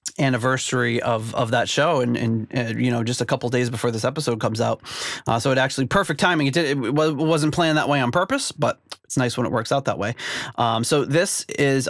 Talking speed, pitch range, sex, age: 235 wpm, 120-150 Hz, male, 30-49